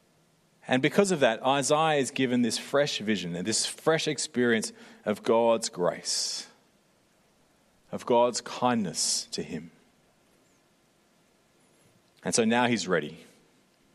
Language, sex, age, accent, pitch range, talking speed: English, male, 30-49, Australian, 125-170 Hz, 115 wpm